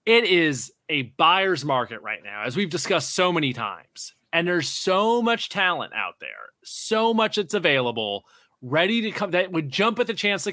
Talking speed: 195 wpm